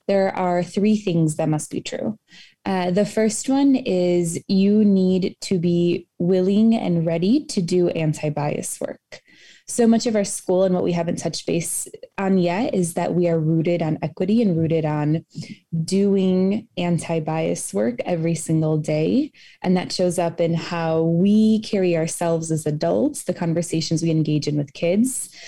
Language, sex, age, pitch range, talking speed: English, female, 20-39, 160-195 Hz, 165 wpm